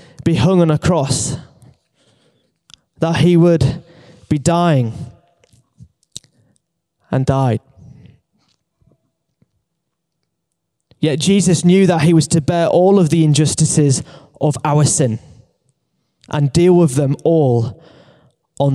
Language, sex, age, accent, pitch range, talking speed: English, male, 20-39, British, 145-185 Hz, 105 wpm